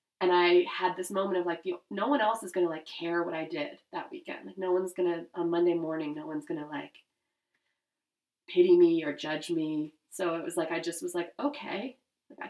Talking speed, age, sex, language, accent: 230 wpm, 20-39, female, English, American